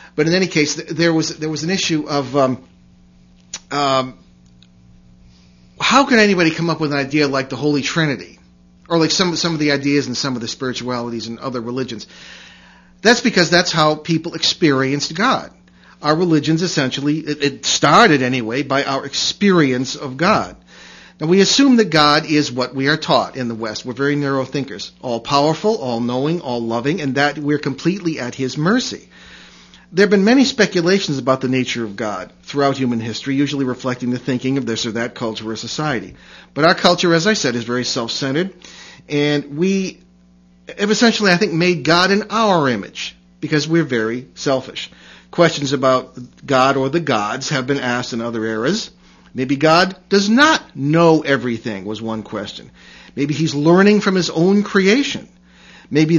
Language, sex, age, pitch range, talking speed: English, male, 40-59, 120-170 Hz, 175 wpm